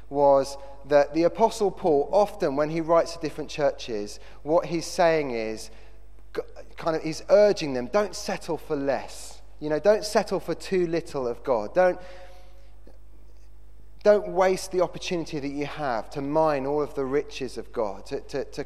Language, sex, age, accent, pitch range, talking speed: English, male, 30-49, British, 130-170 Hz, 170 wpm